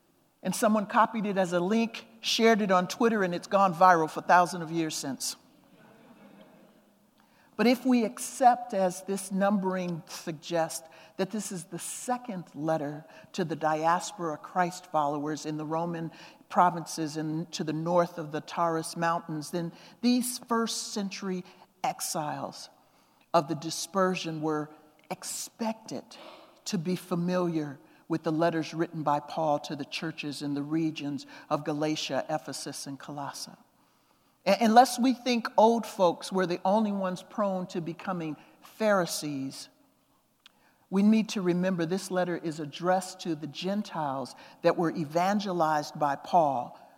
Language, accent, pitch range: English, American, 155-195 Hz